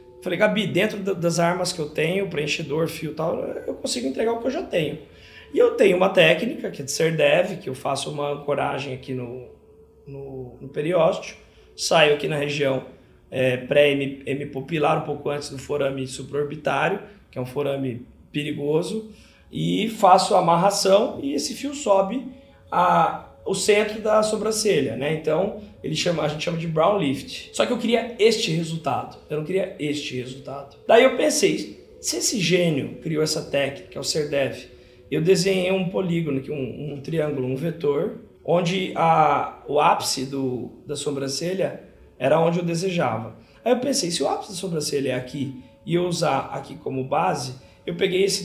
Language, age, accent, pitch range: Portuguese, 20-39, Brazilian, 145-190 Hz